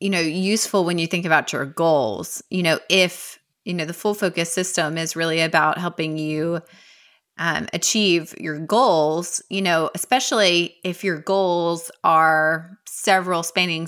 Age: 20-39